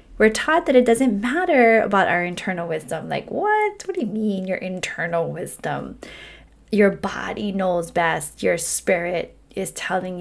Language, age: English, 20-39